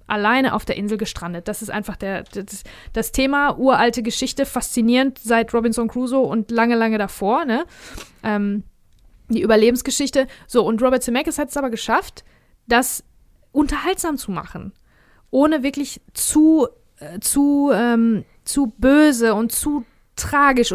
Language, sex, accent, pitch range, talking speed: German, female, German, 220-270 Hz, 145 wpm